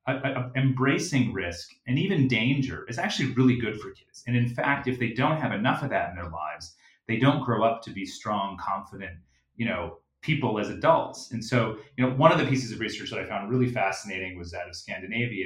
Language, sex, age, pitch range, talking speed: English, male, 30-49, 100-130 Hz, 215 wpm